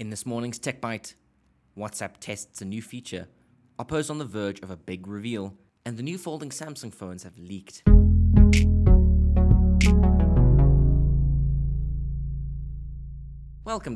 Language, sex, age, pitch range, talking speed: English, male, 20-39, 90-115 Hz, 115 wpm